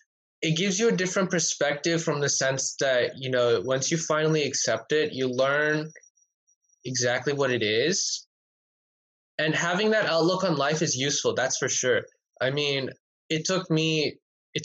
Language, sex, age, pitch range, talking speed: Telugu, male, 10-29, 125-155 Hz, 165 wpm